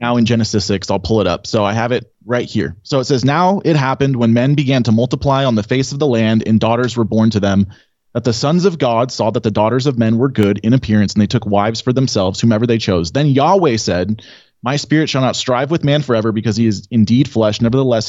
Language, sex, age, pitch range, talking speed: English, male, 30-49, 105-130 Hz, 260 wpm